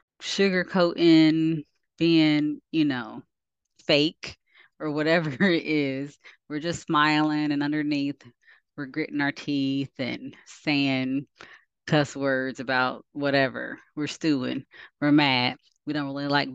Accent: American